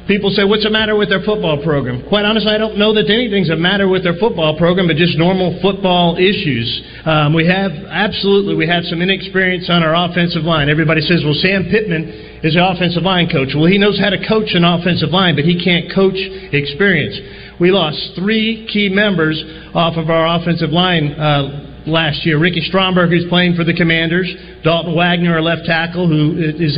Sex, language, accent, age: male, English, American, 40-59